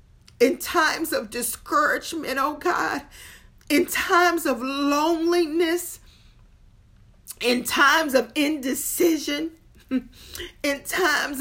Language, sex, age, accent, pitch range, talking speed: English, female, 40-59, American, 235-325 Hz, 85 wpm